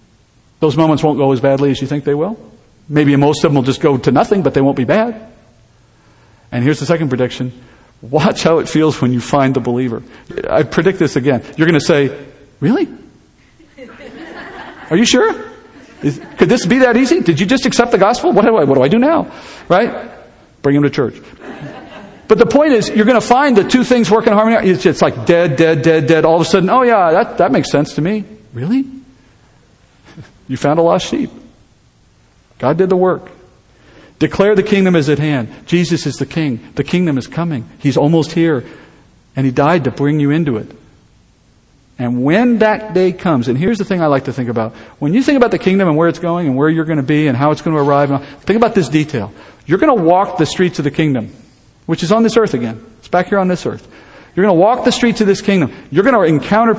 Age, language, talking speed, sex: 50-69, English, 230 wpm, male